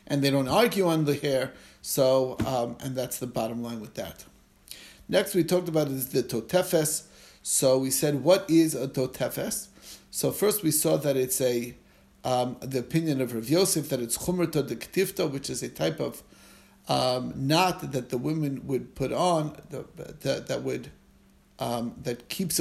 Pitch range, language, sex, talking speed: 125-155 Hz, English, male, 180 wpm